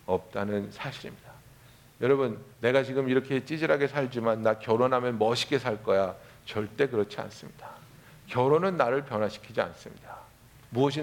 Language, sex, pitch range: Korean, male, 110-135 Hz